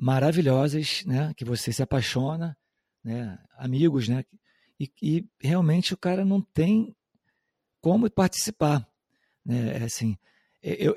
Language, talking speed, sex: English, 120 wpm, male